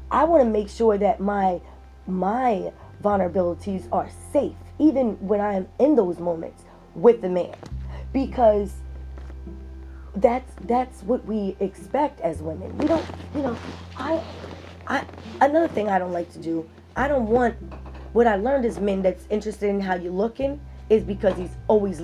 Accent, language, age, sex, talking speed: American, English, 20-39, female, 165 wpm